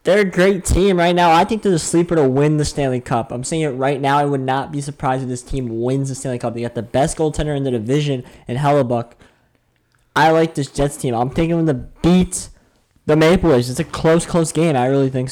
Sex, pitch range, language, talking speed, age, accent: male, 110-145 Hz, English, 250 wpm, 20-39, American